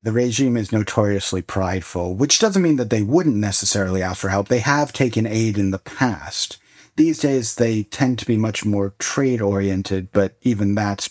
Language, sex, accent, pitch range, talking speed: English, male, American, 100-115 Hz, 185 wpm